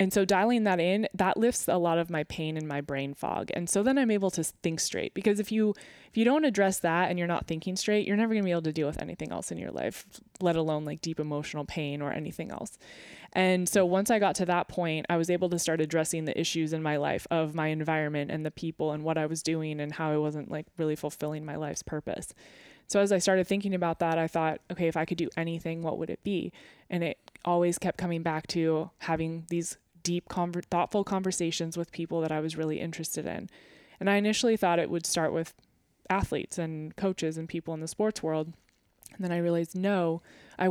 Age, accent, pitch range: 20-39, American, 160-185 Hz